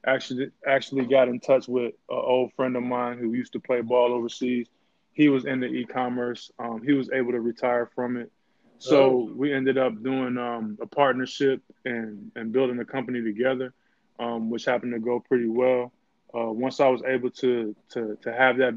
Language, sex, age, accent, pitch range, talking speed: English, male, 20-39, American, 115-130 Hz, 195 wpm